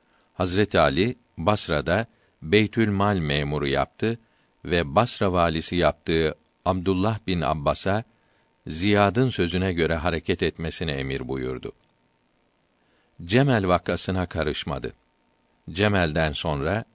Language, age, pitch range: Turkish, 50-69, 85-105 Hz